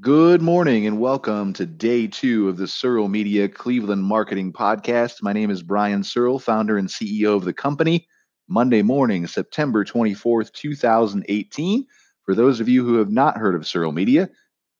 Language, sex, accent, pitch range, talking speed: English, male, American, 95-115 Hz, 165 wpm